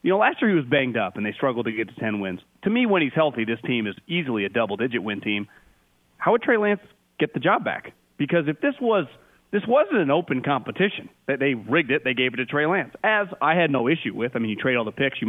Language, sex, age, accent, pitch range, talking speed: English, male, 30-49, American, 140-205 Hz, 270 wpm